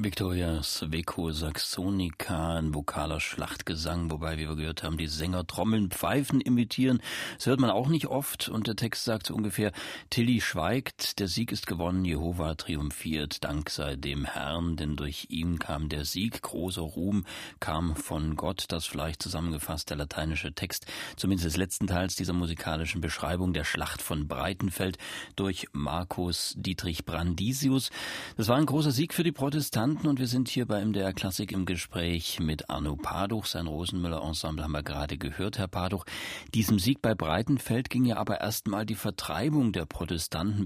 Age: 40-59